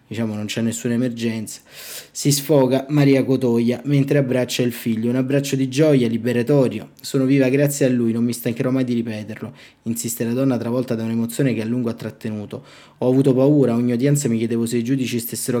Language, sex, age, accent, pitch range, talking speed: Italian, male, 20-39, native, 115-130 Hz, 195 wpm